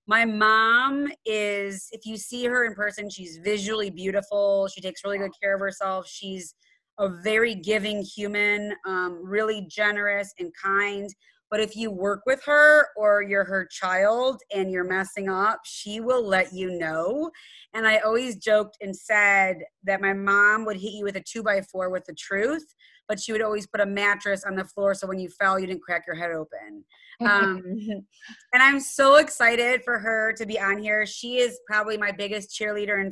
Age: 30-49